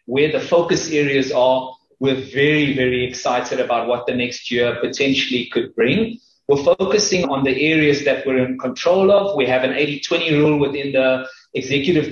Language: English